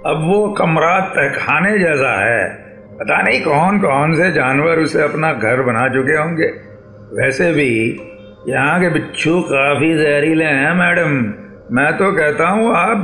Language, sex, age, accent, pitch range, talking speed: Hindi, male, 50-69, native, 115-165 Hz, 150 wpm